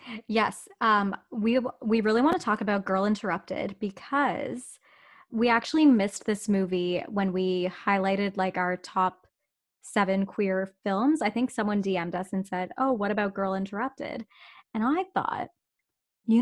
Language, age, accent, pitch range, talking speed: English, 20-39, American, 195-250 Hz, 155 wpm